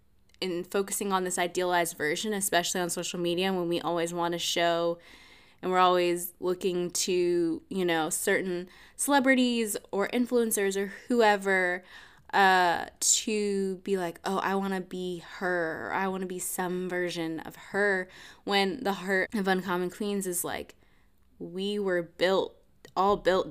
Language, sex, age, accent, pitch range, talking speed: English, female, 10-29, American, 180-210 Hz, 155 wpm